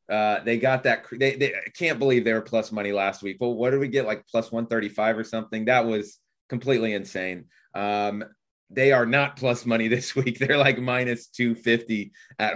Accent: American